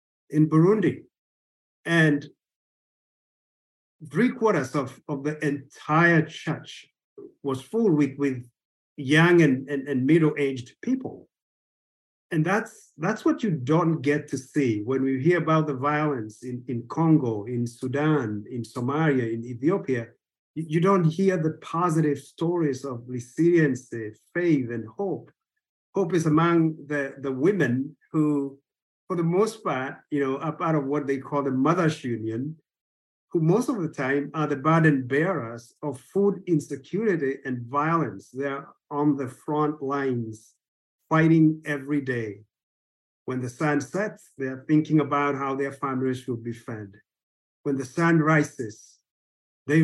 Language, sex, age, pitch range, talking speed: English, male, 50-69, 130-165 Hz, 140 wpm